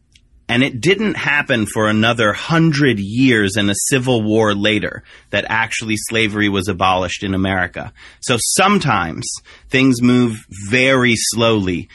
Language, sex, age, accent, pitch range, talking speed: English, male, 30-49, American, 110-135 Hz, 130 wpm